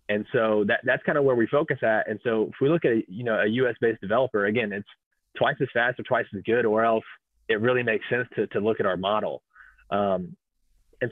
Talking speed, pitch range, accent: 250 wpm, 105-125 Hz, American